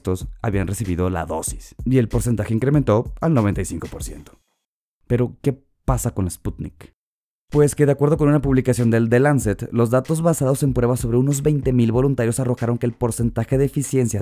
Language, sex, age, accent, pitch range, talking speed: Spanish, male, 30-49, Mexican, 105-135 Hz, 170 wpm